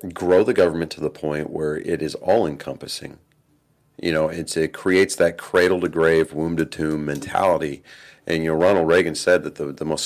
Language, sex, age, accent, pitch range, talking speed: English, male, 40-59, American, 80-95 Hz, 175 wpm